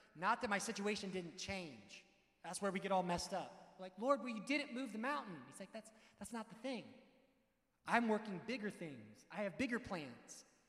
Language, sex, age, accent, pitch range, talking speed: English, male, 30-49, American, 170-230 Hz, 200 wpm